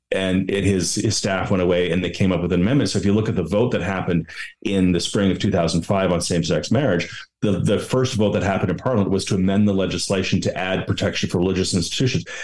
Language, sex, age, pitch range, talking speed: English, male, 30-49, 90-105 Hz, 240 wpm